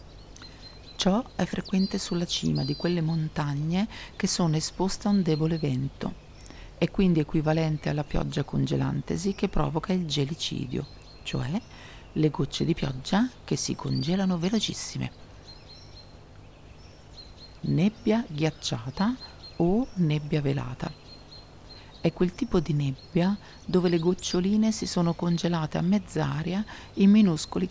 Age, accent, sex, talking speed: 40-59, native, female, 115 wpm